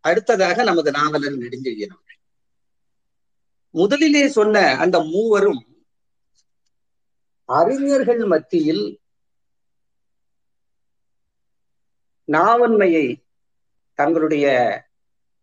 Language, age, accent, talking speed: Tamil, 50-69, native, 45 wpm